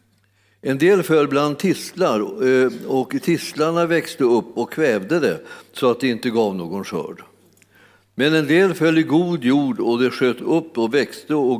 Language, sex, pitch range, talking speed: Swedish, male, 110-150 Hz, 170 wpm